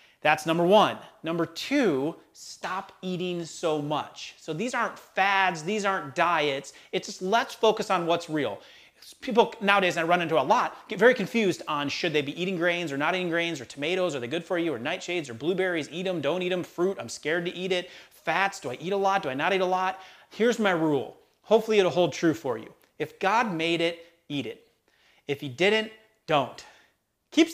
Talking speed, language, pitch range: 210 wpm, English, 165-225 Hz